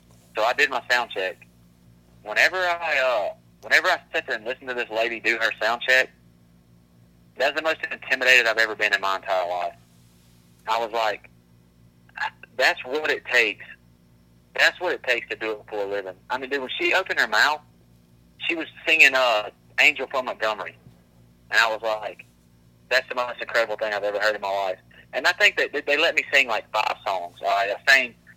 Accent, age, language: American, 30-49, English